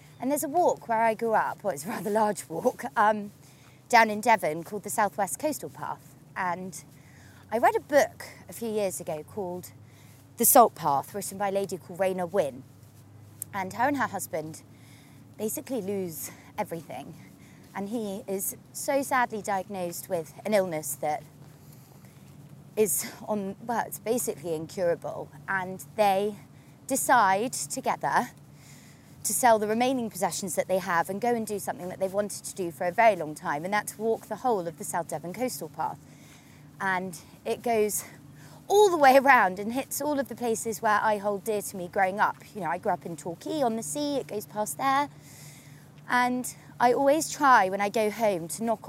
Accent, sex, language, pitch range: British, female, English, 165-230 Hz